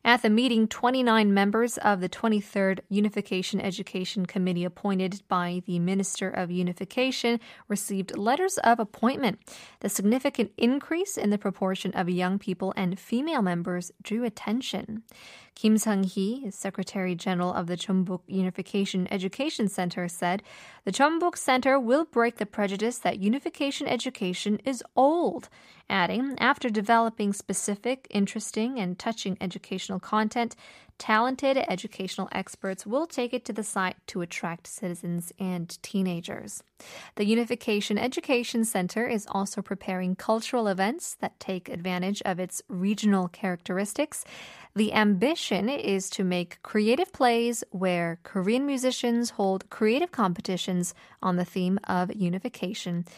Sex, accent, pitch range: female, American, 185-235 Hz